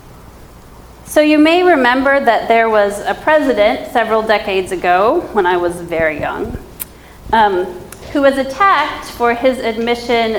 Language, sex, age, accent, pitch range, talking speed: English, female, 30-49, American, 185-255 Hz, 140 wpm